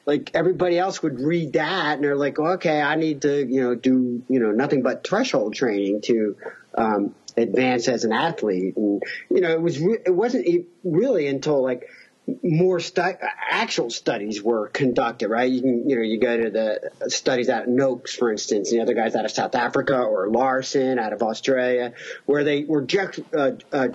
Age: 40-59